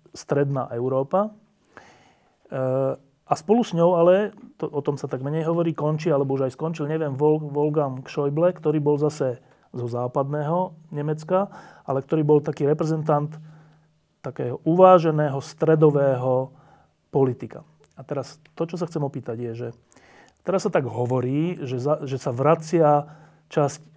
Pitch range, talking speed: 135-160 Hz, 145 wpm